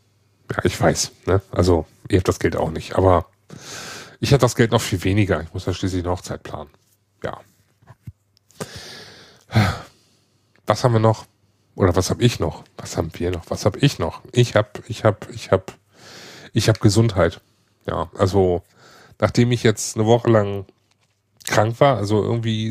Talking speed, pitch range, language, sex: 170 wpm, 100-115 Hz, German, male